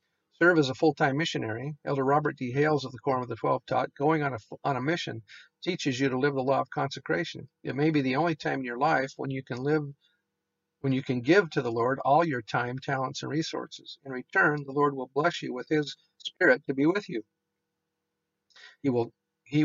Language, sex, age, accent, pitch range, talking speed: English, male, 50-69, American, 130-150 Hz, 225 wpm